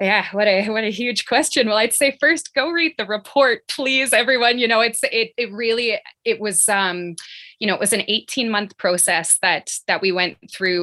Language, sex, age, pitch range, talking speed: English, female, 20-39, 180-220 Hz, 210 wpm